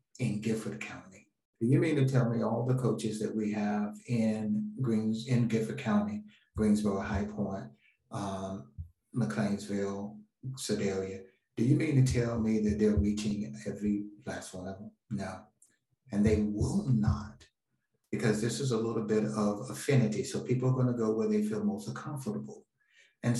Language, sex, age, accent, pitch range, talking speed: English, male, 60-79, American, 105-130 Hz, 165 wpm